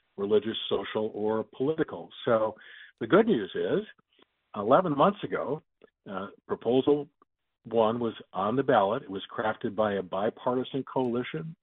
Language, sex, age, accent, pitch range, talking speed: English, male, 50-69, American, 110-135 Hz, 135 wpm